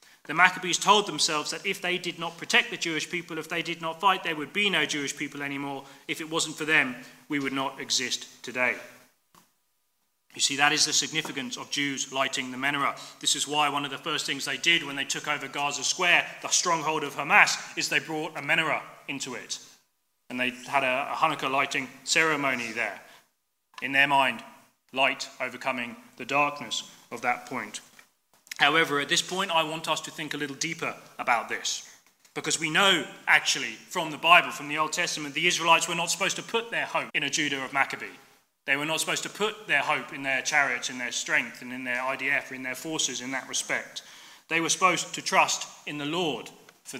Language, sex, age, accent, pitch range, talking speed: English, male, 30-49, British, 140-170 Hz, 210 wpm